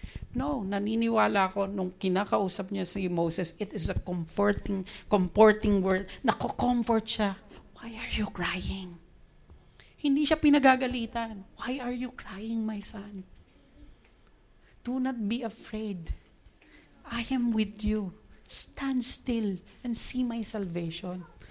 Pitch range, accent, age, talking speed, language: 210-285 Hz, native, 40-59, 120 wpm, Filipino